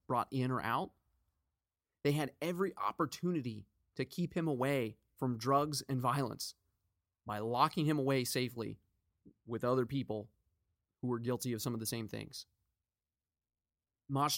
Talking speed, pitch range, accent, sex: 140 wpm, 105-160 Hz, American, male